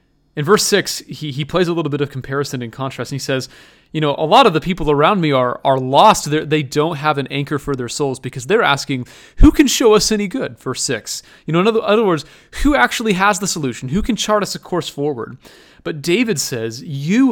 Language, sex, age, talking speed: English, male, 30-49, 245 wpm